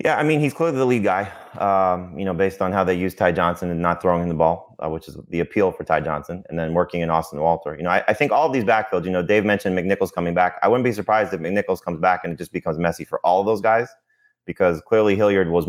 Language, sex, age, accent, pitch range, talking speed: English, male, 20-39, American, 85-100 Hz, 285 wpm